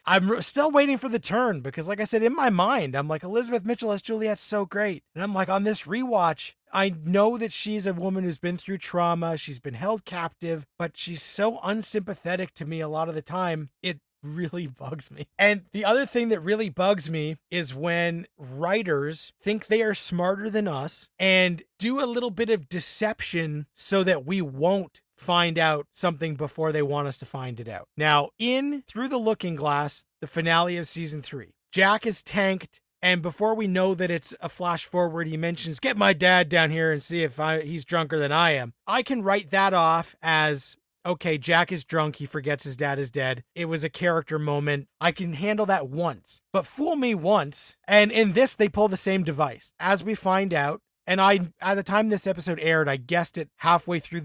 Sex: male